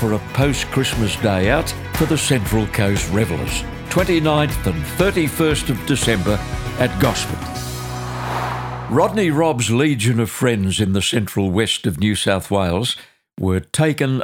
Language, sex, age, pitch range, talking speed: English, male, 60-79, 95-125 Hz, 135 wpm